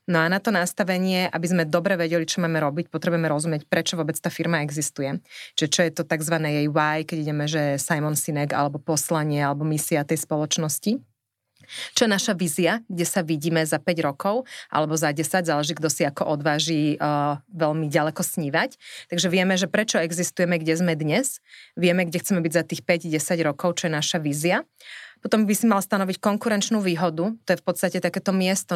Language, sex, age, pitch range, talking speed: Slovak, female, 30-49, 155-185 Hz, 190 wpm